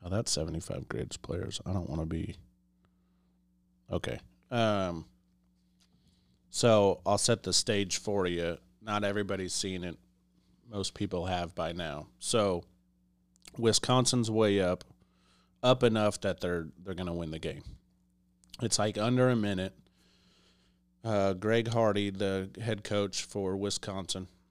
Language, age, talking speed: English, 30-49, 130 wpm